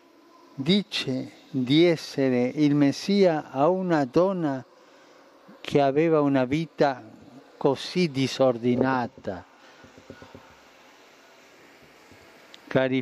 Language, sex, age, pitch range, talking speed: Italian, male, 50-69, 130-160 Hz, 70 wpm